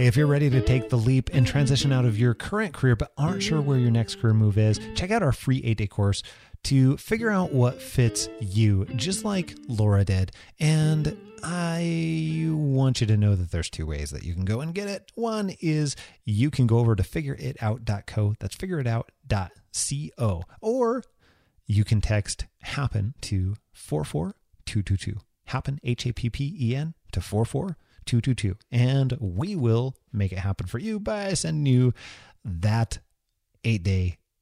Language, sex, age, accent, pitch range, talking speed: English, male, 30-49, American, 100-135 Hz, 160 wpm